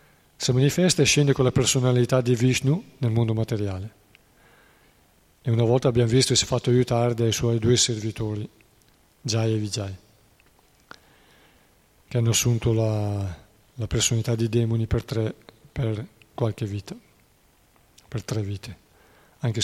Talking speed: 140 wpm